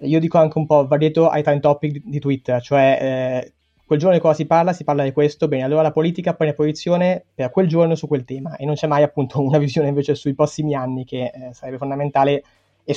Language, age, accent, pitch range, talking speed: Italian, 20-39, native, 130-155 Hz, 240 wpm